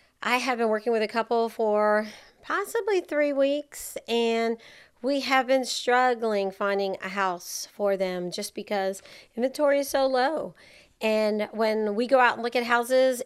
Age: 40-59